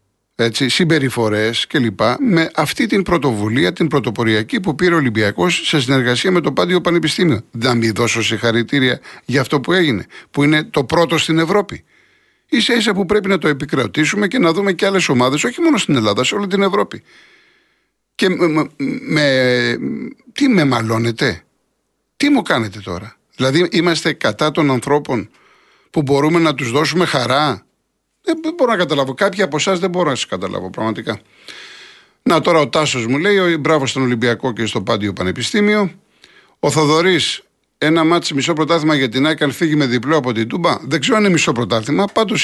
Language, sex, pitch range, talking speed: Greek, male, 125-190 Hz, 175 wpm